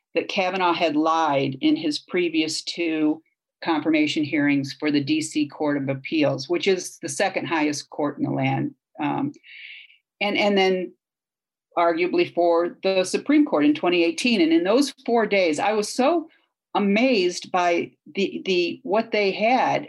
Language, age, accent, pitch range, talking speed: English, 50-69, American, 165-275 Hz, 155 wpm